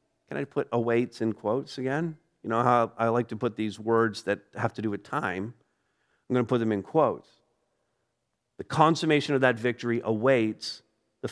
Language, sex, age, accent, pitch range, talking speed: English, male, 50-69, American, 125-165 Hz, 190 wpm